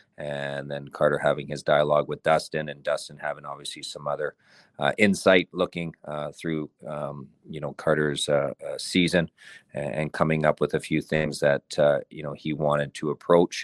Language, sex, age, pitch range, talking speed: English, male, 40-59, 75-80 Hz, 180 wpm